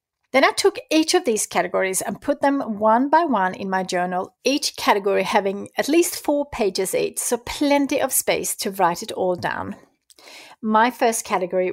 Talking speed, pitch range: 185 wpm, 190-255 Hz